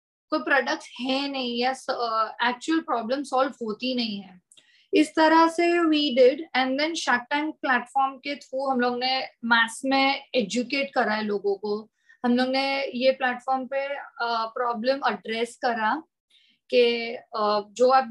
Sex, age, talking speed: female, 20-39, 100 wpm